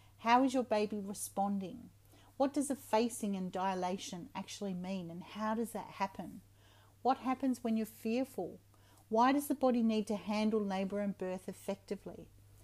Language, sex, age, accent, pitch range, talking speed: English, female, 40-59, Australian, 180-230 Hz, 160 wpm